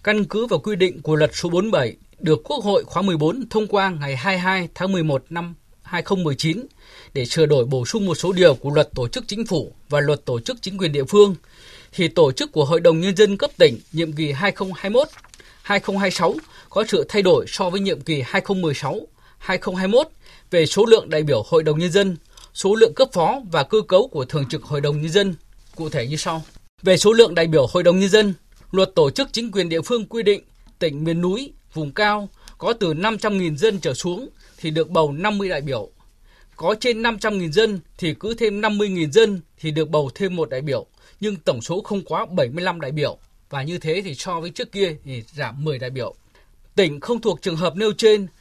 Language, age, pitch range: Vietnamese, 20-39, 155-205 Hz